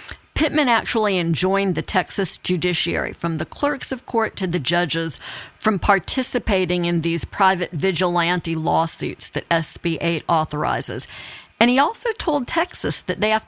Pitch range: 175-215 Hz